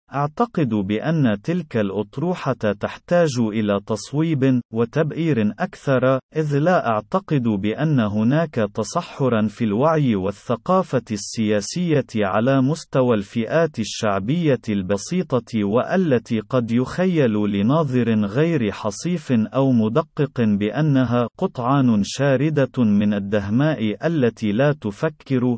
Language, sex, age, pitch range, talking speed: Arabic, male, 40-59, 110-150 Hz, 95 wpm